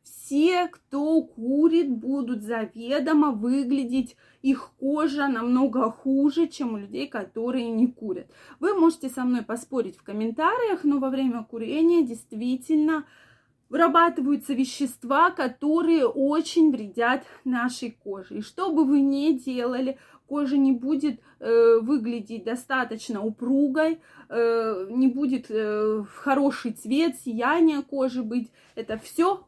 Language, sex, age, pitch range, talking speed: Russian, female, 20-39, 230-285 Hz, 120 wpm